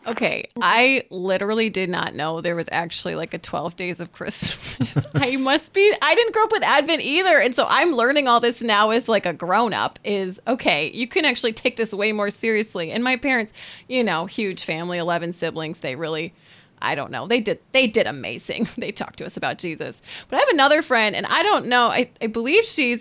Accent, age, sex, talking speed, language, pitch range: American, 30-49, female, 220 wpm, English, 185-245 Hz